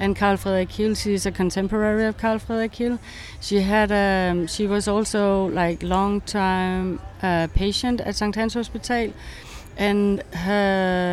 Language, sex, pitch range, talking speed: English, female, 185-225 Hz, 135 wpm